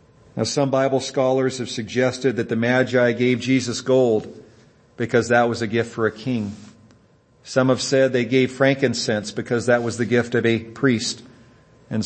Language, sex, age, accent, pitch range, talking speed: English, male, 50-69, American, 115-140 Hz, 175 wpm